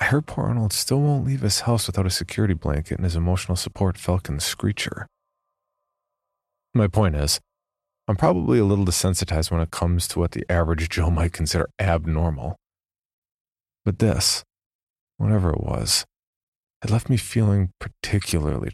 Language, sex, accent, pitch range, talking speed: English, male, American, 85-105 Hz, 155 wpm